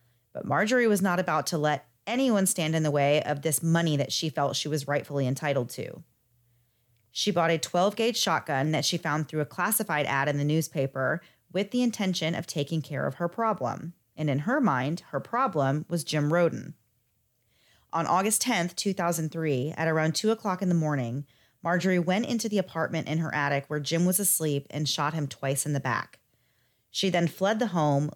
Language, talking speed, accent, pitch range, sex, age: English, 195 wpm, American, 145-180 Hz, female, 30-49